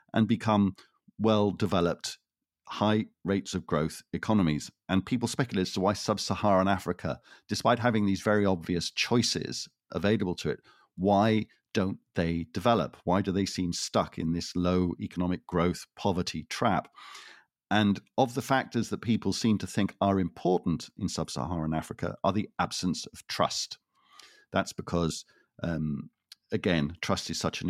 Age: 50-69